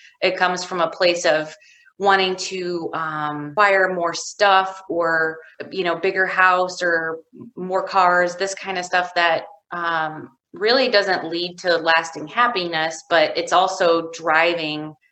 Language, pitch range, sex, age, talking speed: English, 165-210 Hz, female, 20-39, 145 wpm